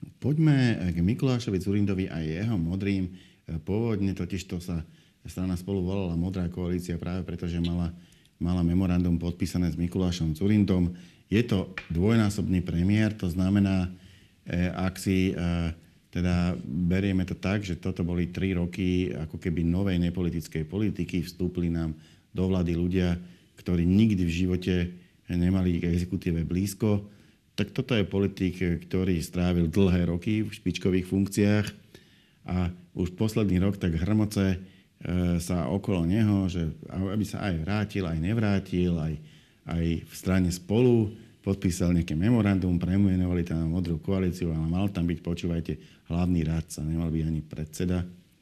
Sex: male